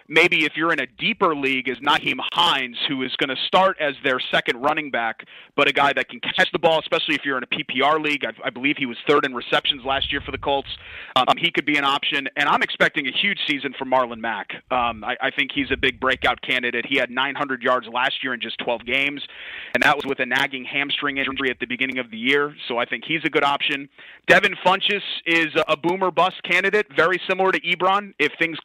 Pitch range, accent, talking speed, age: 130-160 Hz, American, 245 wpm, 30-49